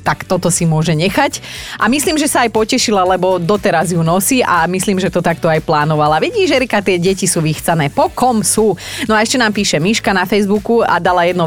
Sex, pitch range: female, 170-215 Hz